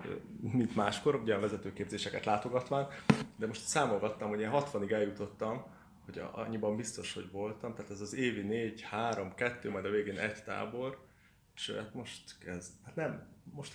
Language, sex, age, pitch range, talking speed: Hungarian, male, 20-39, 100-120 Hz, 160 wpm